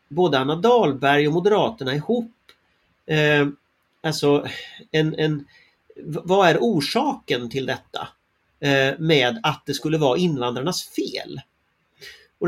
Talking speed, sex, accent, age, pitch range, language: 115 wpm, male, native, 40-59, 140-205 Hz, Swedish